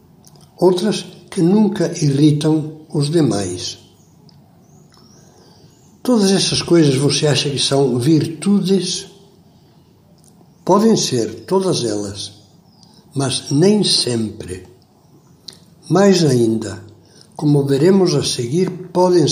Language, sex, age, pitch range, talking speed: Portuguese, male, 60-79, 130-175 Hz, 85 wpm